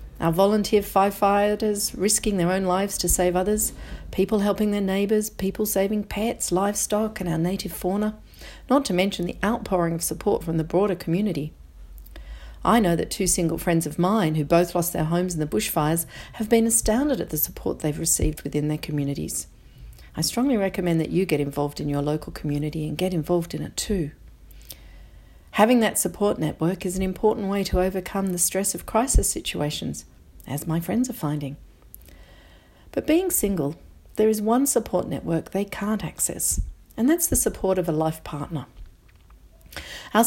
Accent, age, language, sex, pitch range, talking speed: Australian, 40-59, English, female, 150-205 Hz, 175 wpm